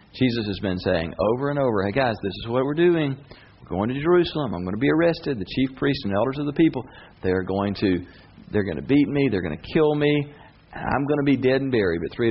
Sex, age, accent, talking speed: male, 40-59, American, 250 wpm